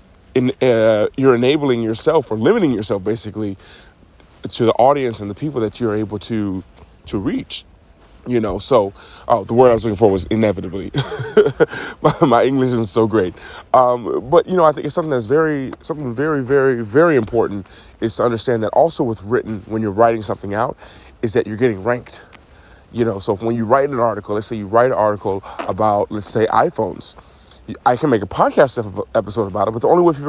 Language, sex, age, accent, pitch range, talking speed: English, male, 30-49, American, 105-130 Hz, 200 wpm